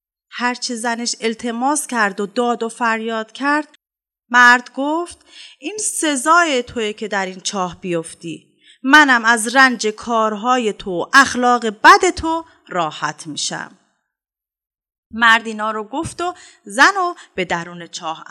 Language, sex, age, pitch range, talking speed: Persian, female, 30-49, 210-330 Hz, 135 wpm